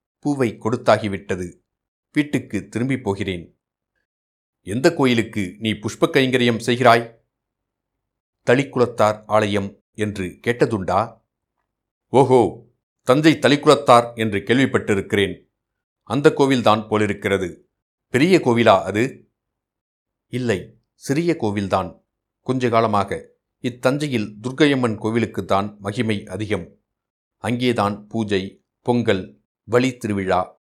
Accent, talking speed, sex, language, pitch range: native, 85 wpm, male, Tamil, 100-125 Hz